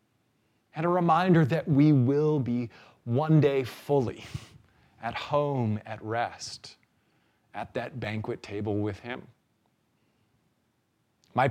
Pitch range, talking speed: 115-155 Hz, 110 wpm